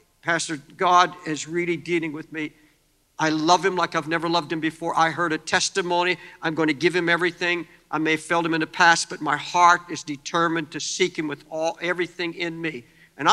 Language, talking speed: English, 215 wpm